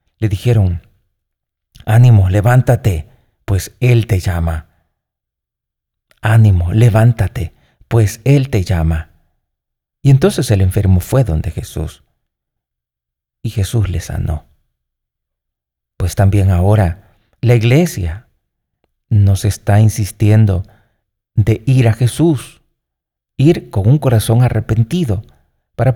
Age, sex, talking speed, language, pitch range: 40-59, male, 100 wpm, Spanish, 90-120 Hz